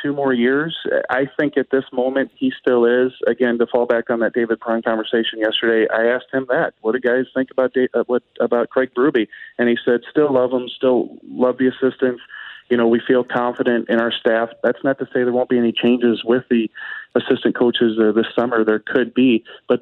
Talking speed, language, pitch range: 220 wpm, English, 115-135 Hz